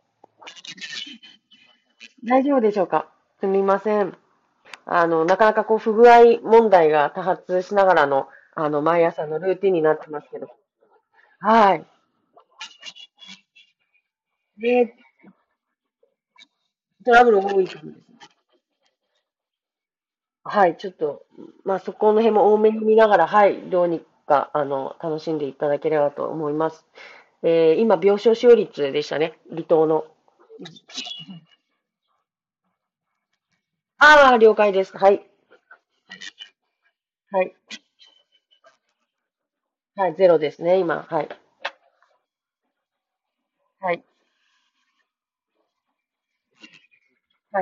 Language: Japanese